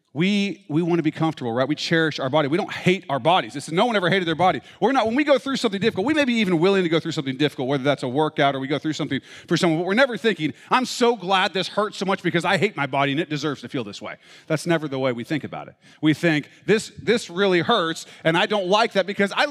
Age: 40-59